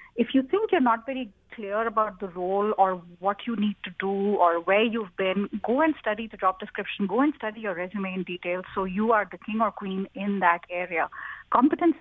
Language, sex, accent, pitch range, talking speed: English, female, Indian, 200-260 Hz, 220 wpm